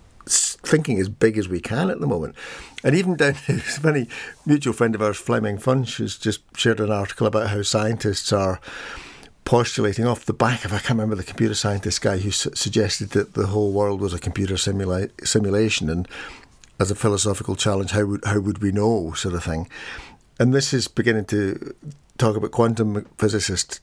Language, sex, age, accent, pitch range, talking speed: English, male, 50-69, British, 100-120 Hz, 195 wpm